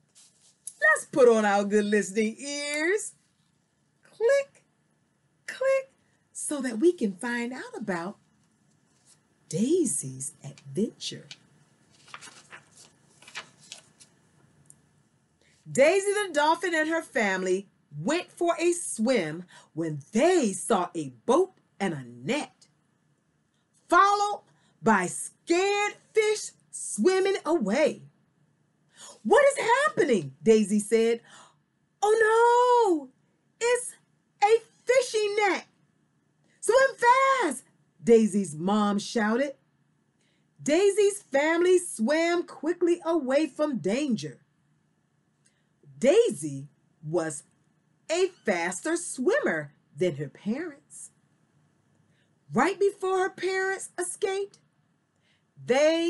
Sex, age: female, 40-59